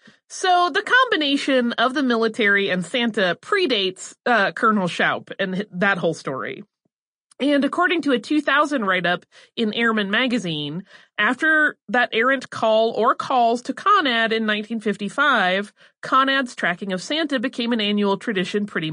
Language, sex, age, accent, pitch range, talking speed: English, female, 30-49, American, 200-270 Hz, 140 wpm